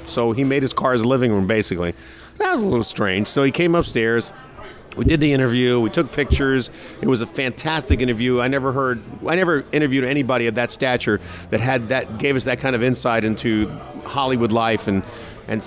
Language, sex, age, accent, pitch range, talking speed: English, male, 50-69, American, 110-135 Hz, 205 wpm